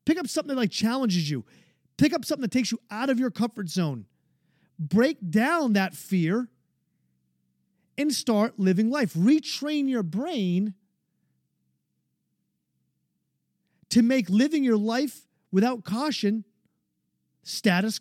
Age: 40-59